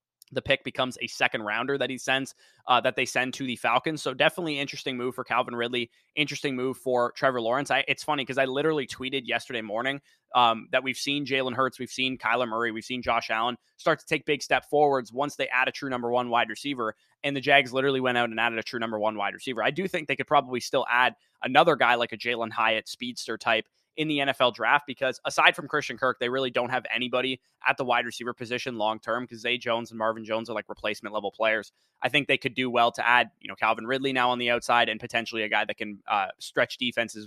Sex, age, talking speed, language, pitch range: male, 20-39, 245 wpm, English, 120-140 Hz